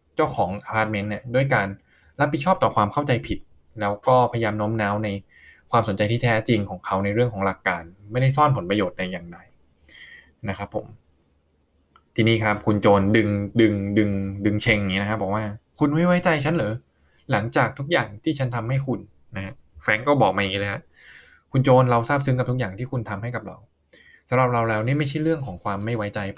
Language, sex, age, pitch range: Thai, male, 20-39, 95-130 Hz